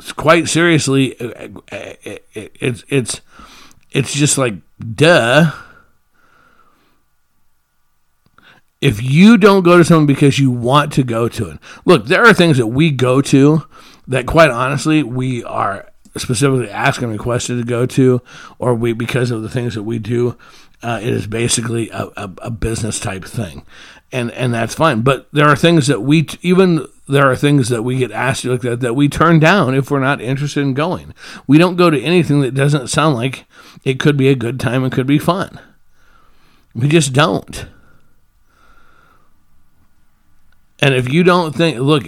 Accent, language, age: American, English, 50-69